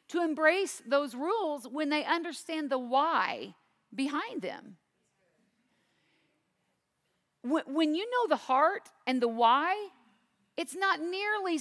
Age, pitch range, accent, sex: 40-59, 220-310 Hz, American, female